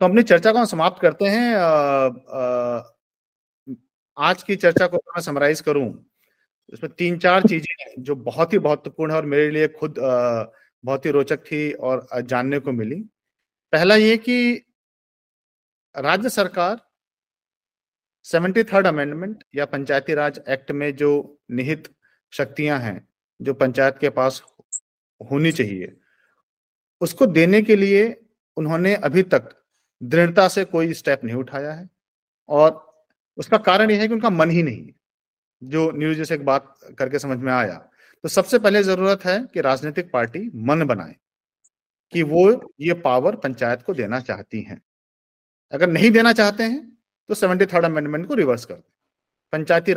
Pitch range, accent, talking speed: 140-195 Hz, native, 155 wpm